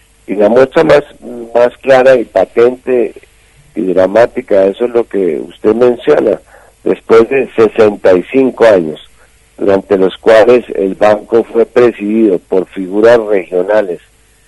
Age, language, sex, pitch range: 50-69, Spanish, male, 95-120 Hz